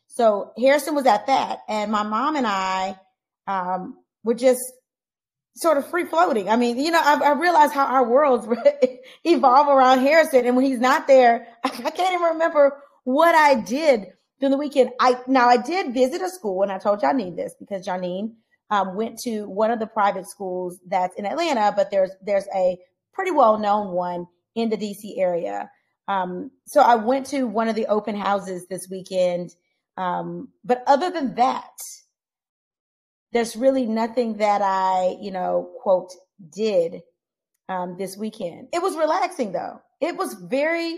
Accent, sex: American, female